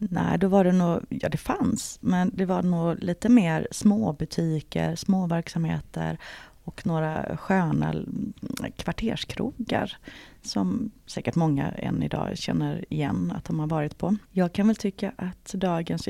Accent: native